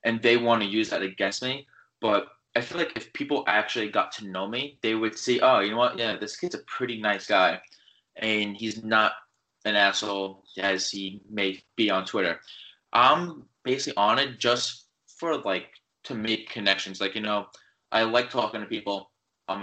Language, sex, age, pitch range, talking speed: English, male, 20-39, 100-120 Hz, 195 wpm